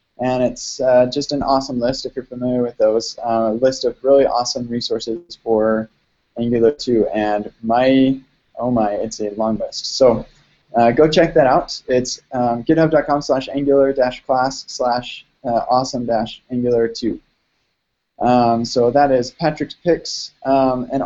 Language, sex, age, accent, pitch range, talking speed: English, male, 20-39, American, 120-145 Hz, 155 wpm